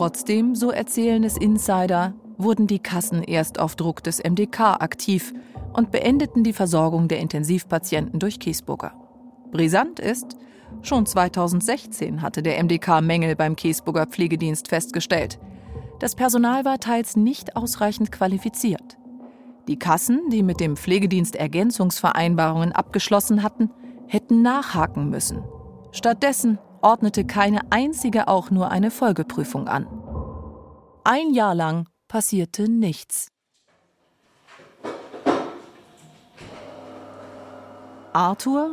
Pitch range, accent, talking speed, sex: 170-230 Hz, German, 105 wpm, female